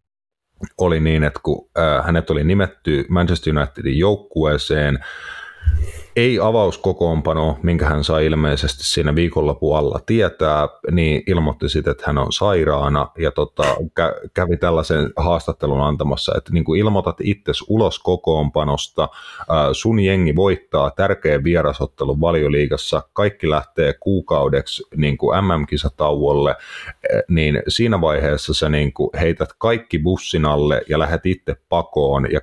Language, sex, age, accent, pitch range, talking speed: Finnish, male, 30-49, native, 75-85 Hz, 120 wpm